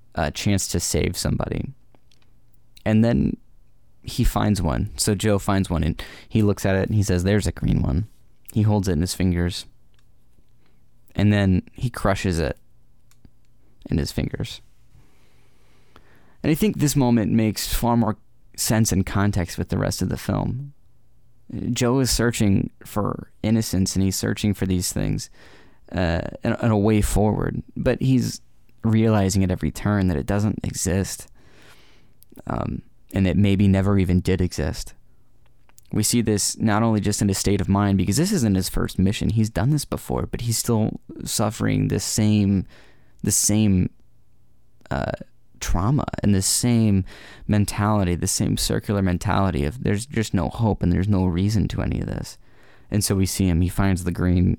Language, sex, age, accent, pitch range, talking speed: English, male, 20-39, American, 95-110 Hz, 170 wpm